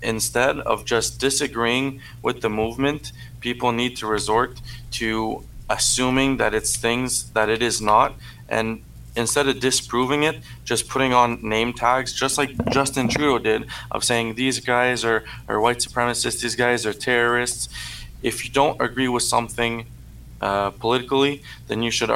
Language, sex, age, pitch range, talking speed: English, male, 20-39, 110-130 Hz, 155 wpm